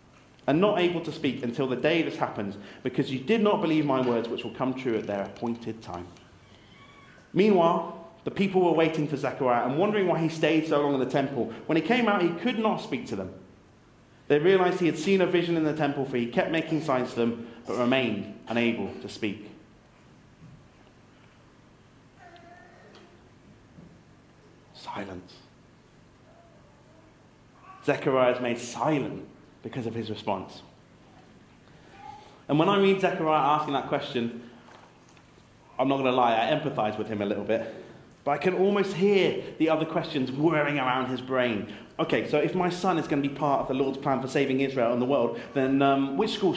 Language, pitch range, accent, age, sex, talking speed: English, 120-165 Hz, British, 30-49, male, 180 wpm